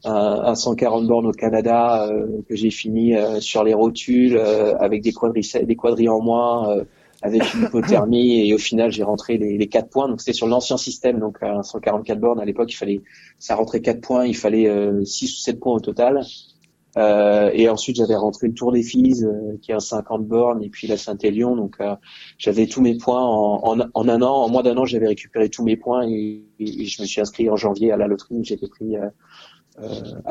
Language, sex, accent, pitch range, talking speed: French, male, French, 105-125 Hz, 230 wpm